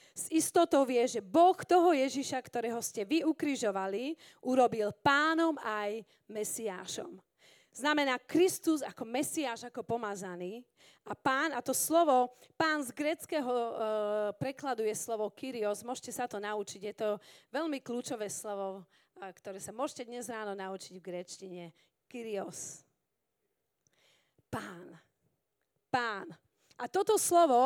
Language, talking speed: Slovak, 125 wpm